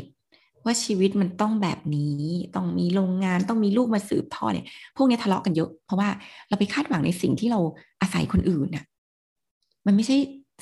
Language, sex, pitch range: Thai, female, 170-220 Hz